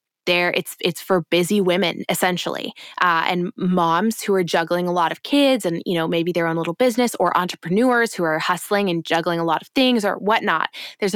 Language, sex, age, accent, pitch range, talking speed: English, female, 20-39, American, 180-220 Hz, 210 wpm